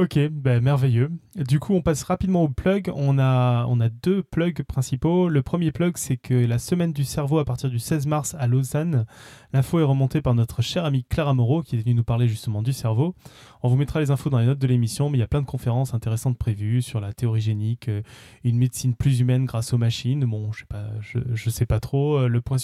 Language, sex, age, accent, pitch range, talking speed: French, male, 20-39, French, 120-145 Hz, 240 wpm